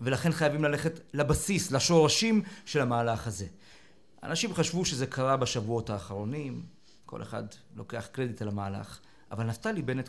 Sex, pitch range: male, 130-175 Hz